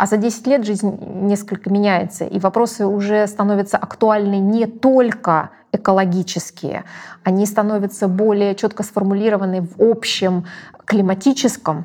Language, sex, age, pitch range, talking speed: Russian, female, 20-39, 190-220 Hz, 115 wpm